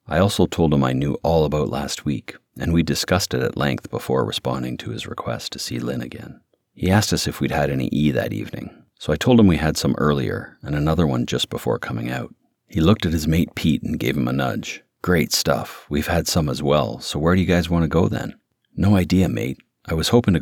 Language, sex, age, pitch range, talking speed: English, male, 40-59, 70-90 Hz, 245 wpm